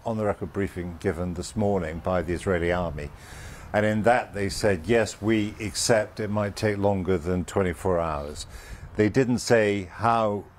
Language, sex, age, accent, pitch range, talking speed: English, male, 50-69, British, 95-115 Hz, 170 wpm